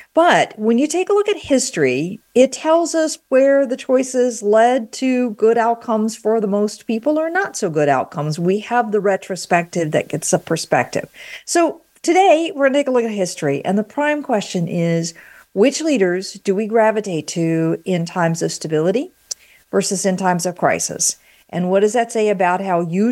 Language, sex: English, female